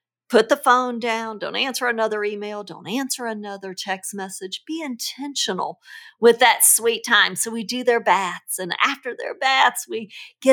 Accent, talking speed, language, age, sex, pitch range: American, 170 wpm, English, 50-69, female, 190-285 Hz